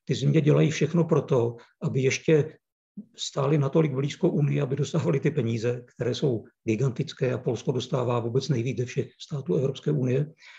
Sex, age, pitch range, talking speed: male, 50-69, 130-155 Hz, 145 wpm